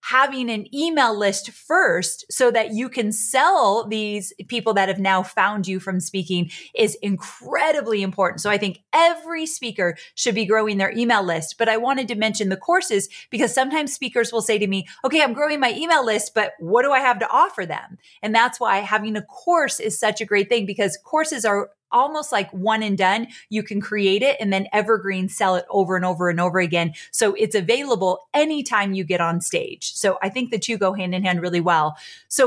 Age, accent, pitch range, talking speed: 30-49, American, 190-240 Hz, 215 wpm